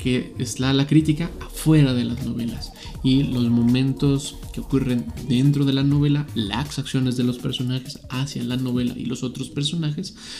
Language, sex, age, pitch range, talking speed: Spanish, male, 20-39, 120-145 Hz, 175 wpm